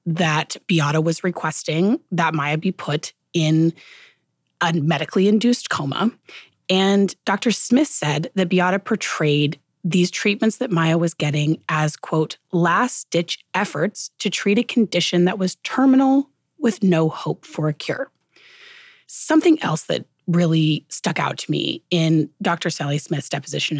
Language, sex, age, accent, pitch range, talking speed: English, female, 30-49, American, 155-195 Hz, 145 wpm